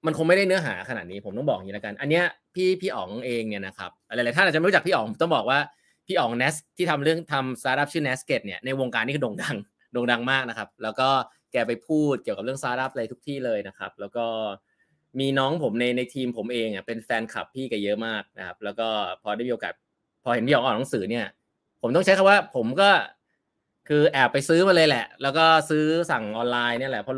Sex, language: male, Thai